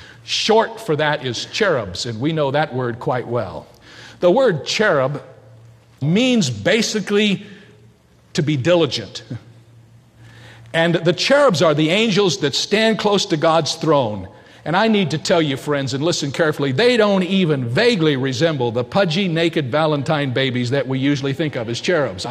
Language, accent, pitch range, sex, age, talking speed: English, American, 135-180 Hz, male, 50-69, 160 wpm